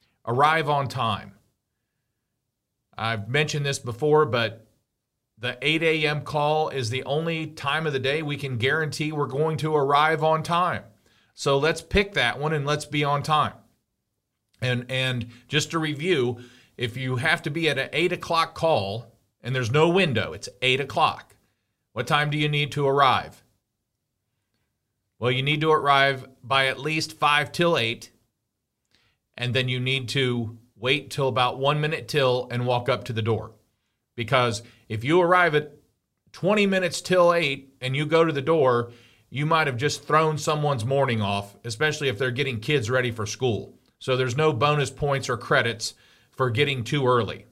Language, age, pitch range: English, 40-59, 120-150 Hz